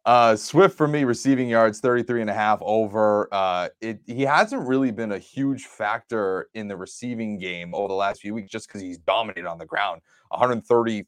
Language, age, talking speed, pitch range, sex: English, 30-49, 200 wpm, 100-120 Hz, male